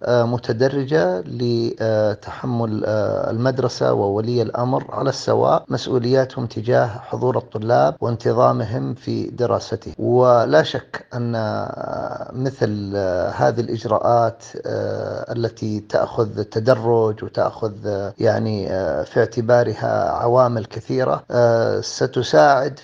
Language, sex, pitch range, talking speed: Arabic, male, 115-130 Hz, 80 wpm